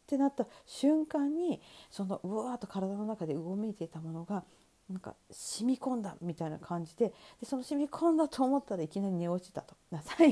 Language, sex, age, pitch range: Japanese, female, 40-59, 165-255 Hz